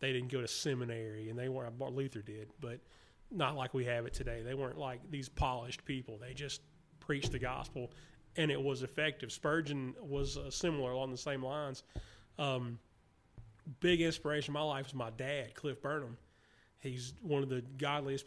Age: 30-49